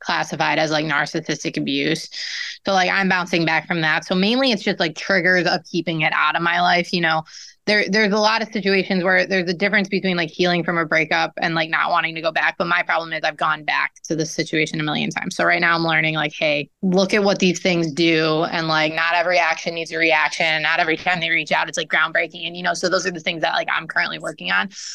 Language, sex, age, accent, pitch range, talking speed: English, female, 20-39, American, 160-195 Hz, 255 wpm